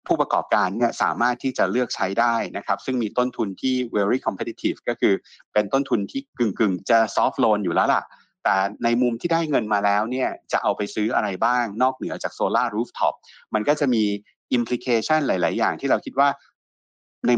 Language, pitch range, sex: Thai, 105-130 Hz, male